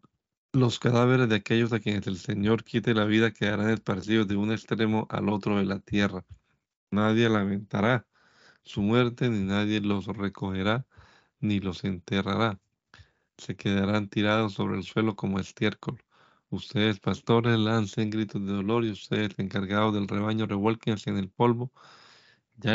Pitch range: 100-110 Hz